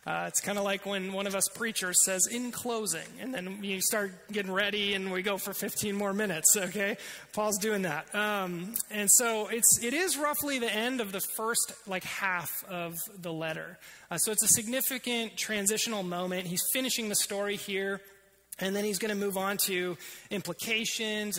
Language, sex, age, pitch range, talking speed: English, male, 30-49, 190-230 Hz, 190 wpm